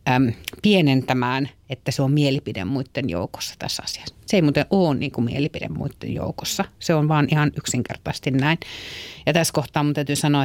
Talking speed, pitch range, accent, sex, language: 165 wpm, 130-150 Hz, native, female, Finnish